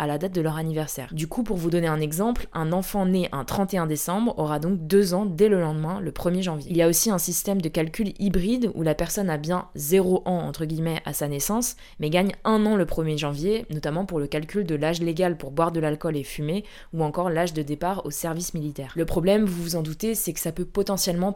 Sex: female